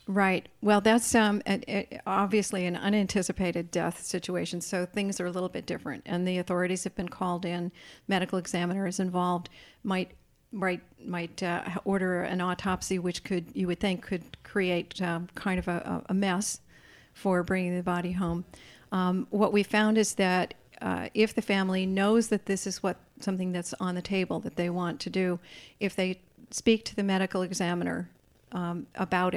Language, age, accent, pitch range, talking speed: English, 50-69, American, 180-195 Hz, 175 wpm